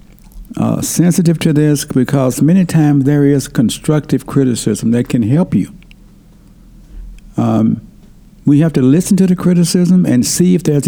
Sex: male